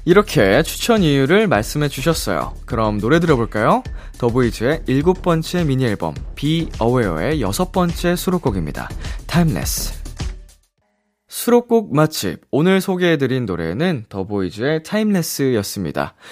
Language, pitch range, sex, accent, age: Korean, 100-160 Hz, male, native, 20-39